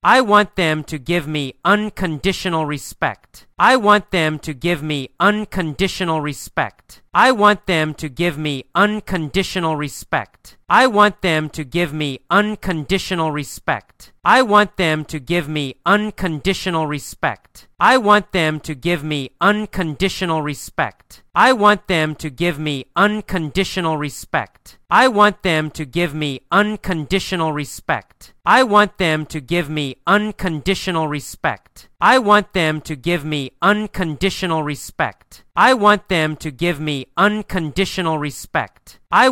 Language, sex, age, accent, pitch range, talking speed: English, male, 30-49, American, 155-195 Hz, 135 wpm